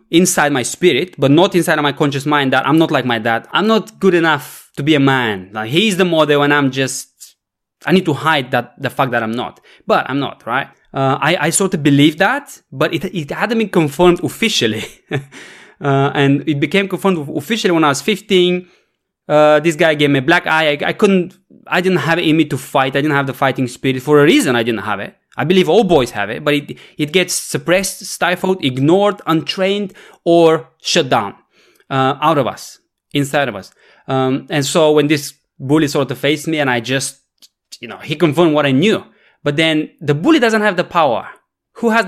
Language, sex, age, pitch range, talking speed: English, male, 20-39, 140-180 Hz, 220 wpm